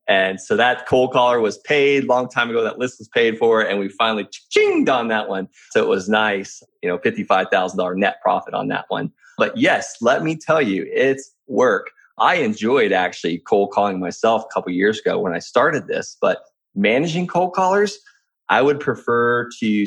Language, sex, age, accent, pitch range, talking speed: English, male, 20-39, American, 115-150 Hz, 200 wpm